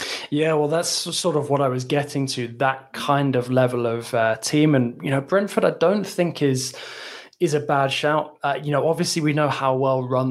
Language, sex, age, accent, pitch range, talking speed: English, male, 20-39, British, 120-140 Hz, 220 wpm